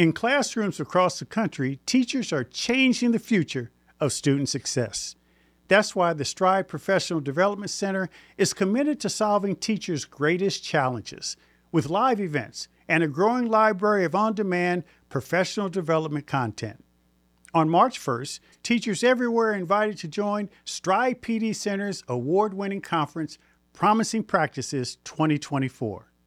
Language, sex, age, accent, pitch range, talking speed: English, male, 50-69, American, 150-215 Hz, 130 wpm